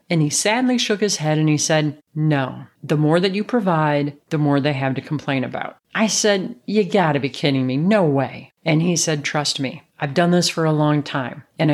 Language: English